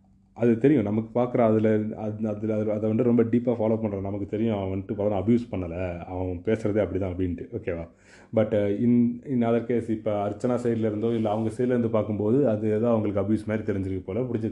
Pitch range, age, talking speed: 95-115 Hz, 30-49, 190 wpm